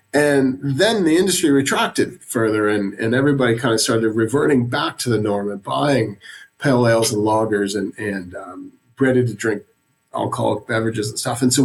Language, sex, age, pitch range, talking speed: English, male, 40-59, 110-140 Hz, 180 wpm